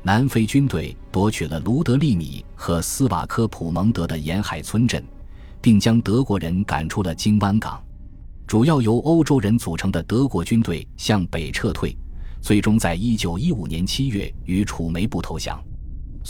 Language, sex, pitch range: Chinese, male, 80-110 Hz